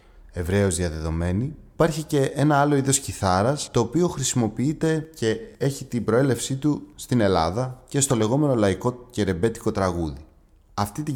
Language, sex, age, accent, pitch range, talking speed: Greek, male, 30-49, native, 95-125 Hz, 145 wpm